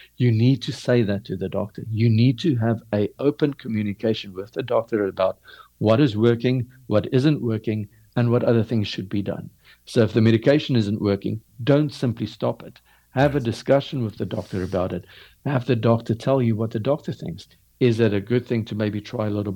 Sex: male